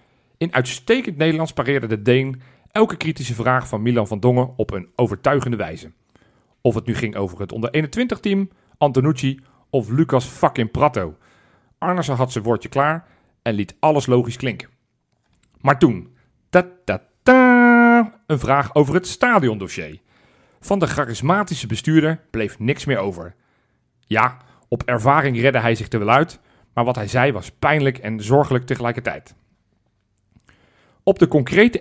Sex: male